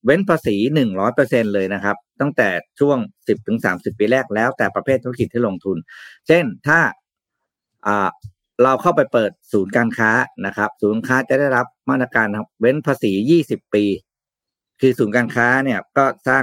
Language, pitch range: Thai, 105-130 Hz